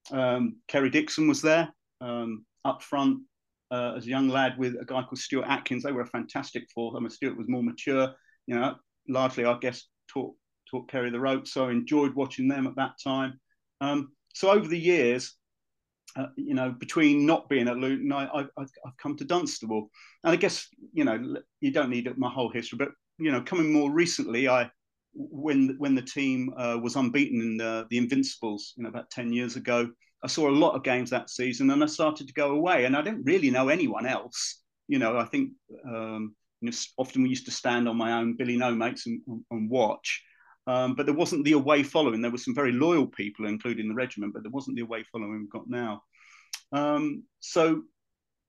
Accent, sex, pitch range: British, male, 120-155 Hz